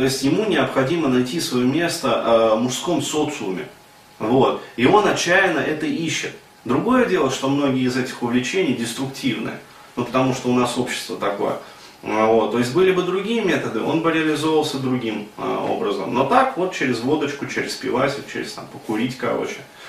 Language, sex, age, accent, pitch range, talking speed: Russian, male, 30-49, native, 115-140 Hz, 165 wpm